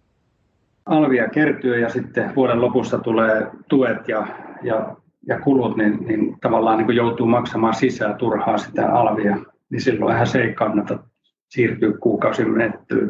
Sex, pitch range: male, 115-130 Hz